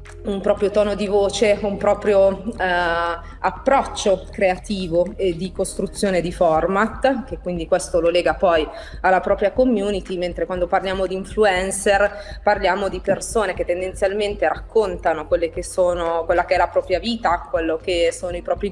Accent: native